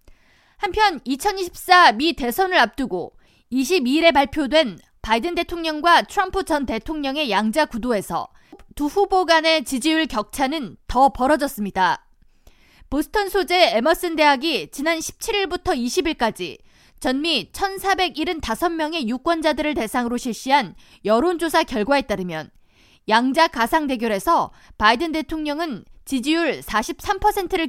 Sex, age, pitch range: female, 20-39, 250-350 Hz